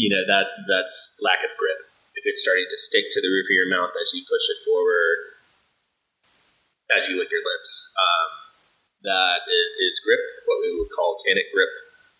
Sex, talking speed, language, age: male, 185 wpm, English, 20-39